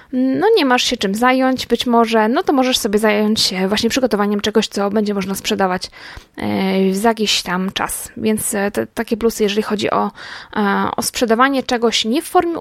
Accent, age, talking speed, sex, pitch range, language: native, 20-39, 180 wpm, female, 210-275 Hz, Polish